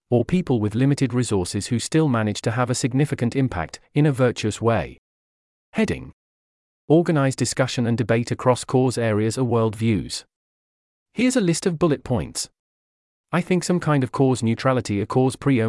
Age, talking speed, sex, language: 40-59, 165 wpm, male, English